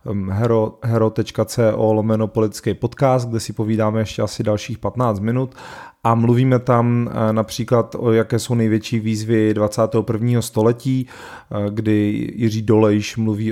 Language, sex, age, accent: Czech, male, 30-49, native